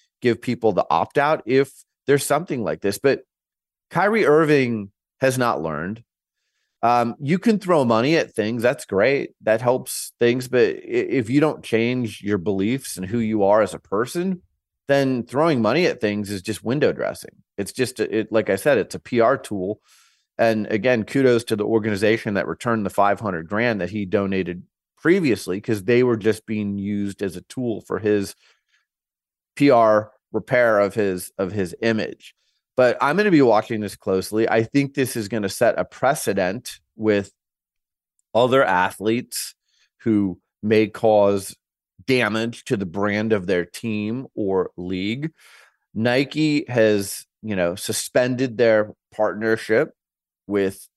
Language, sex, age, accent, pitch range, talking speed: English, male, 30-49, American, 100-120 Hz, 155 wpm